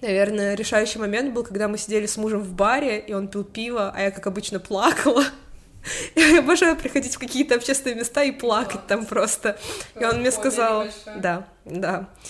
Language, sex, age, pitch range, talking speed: Russian, female, 20-39, 210-265 Hz, 180 wpm